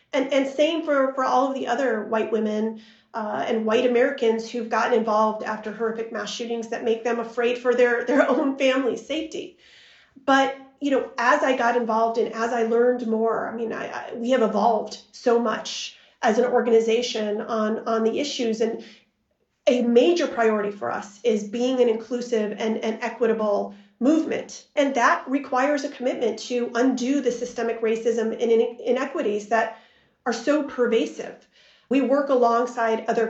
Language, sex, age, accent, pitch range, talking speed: English, female, 30-49, American, 225-255 Hz, 170 wpm